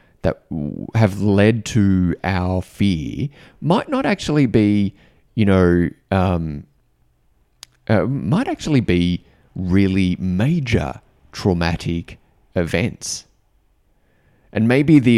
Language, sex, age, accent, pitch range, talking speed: English, male, 30-49, Australian, 85-110 Hz, 95 wpm